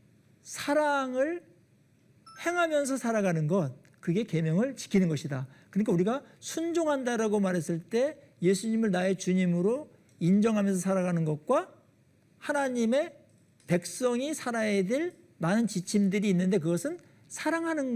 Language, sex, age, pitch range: Korean, male, 50-69, 165-265 Hz